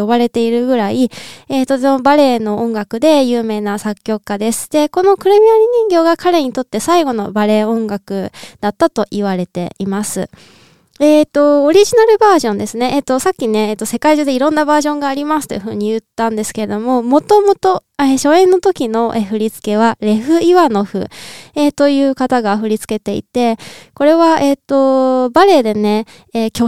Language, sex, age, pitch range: Japanese, female, 20-39, 215-305 Hz